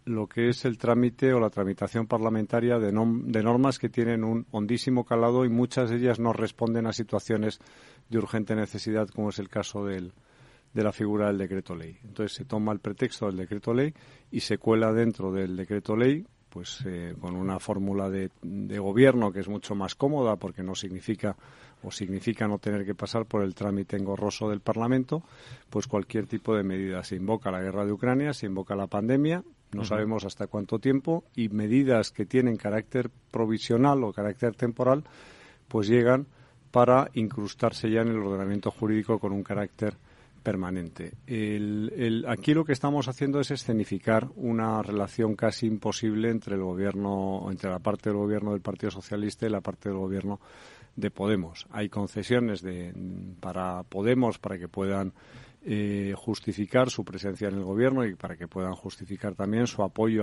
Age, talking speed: 50-69, 175 wpm